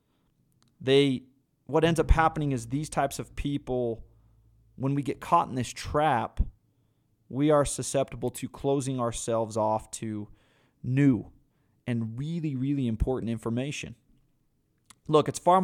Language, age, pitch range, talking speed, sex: English, 30-49, 125-150 Hz, 130 wpm, male